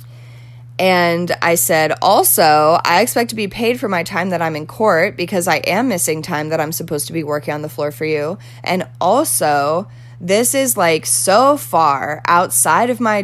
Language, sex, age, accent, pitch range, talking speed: English, female, 20-39, American, 150-225 Hz, 190 wpm